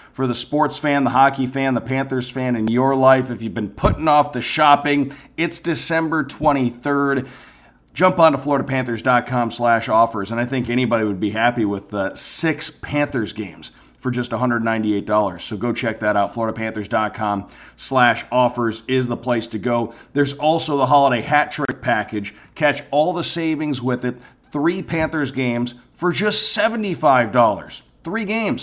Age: 40-59